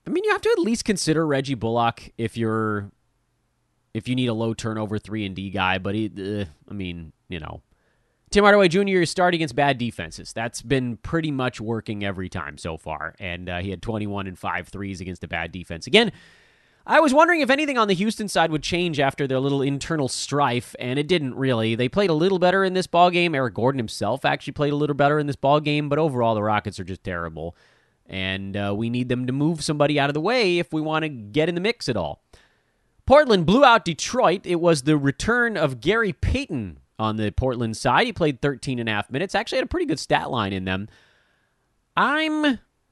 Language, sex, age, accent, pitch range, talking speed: English, male, 30-49, American, 105-170 Hz, 225 wpm